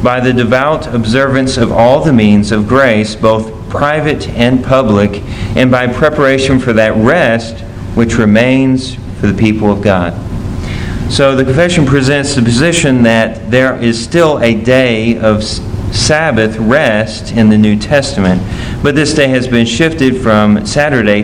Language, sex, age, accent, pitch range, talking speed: English, male, 40-59, American, 105-125 Hz, 155 wpm